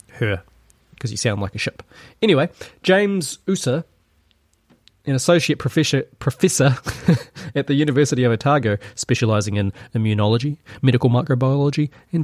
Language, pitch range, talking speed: English, 105-155 Hz, 120 wpm